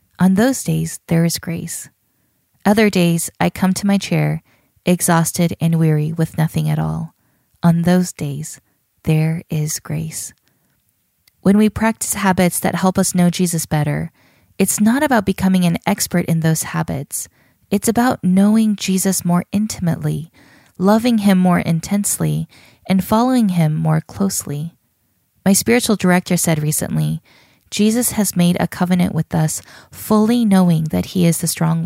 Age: 20-39